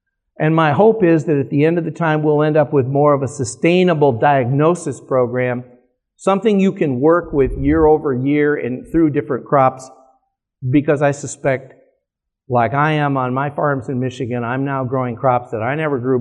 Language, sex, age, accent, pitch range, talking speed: English, male, 50-69, American, 130-170 Hz, 195 wpm